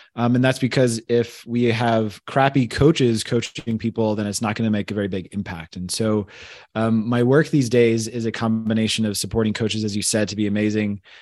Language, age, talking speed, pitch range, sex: English, 20-39, 215 wpm, 110-120 Hz, male